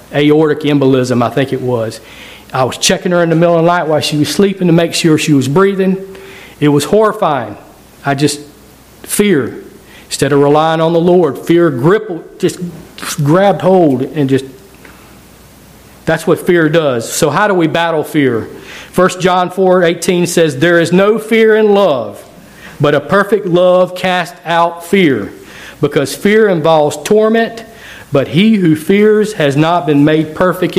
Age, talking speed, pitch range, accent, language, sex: 40-59, 170 wpm, 145-180 Hz, American, English, male